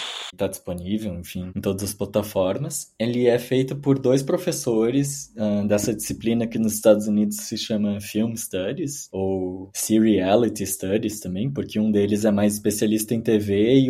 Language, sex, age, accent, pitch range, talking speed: Portuguese, male, 20-39, Brazilian, 100-120 Hz, 160 wpm